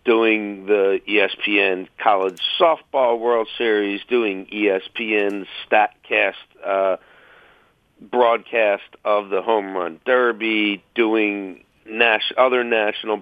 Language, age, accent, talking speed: English, 50-69, American, 95 wpm